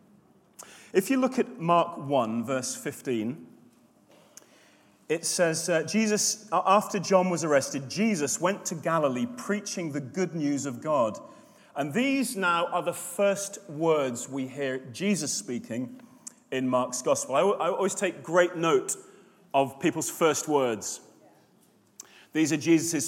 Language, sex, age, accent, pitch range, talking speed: English, male, 30-49, British, 170-240 Hz, 140 wpm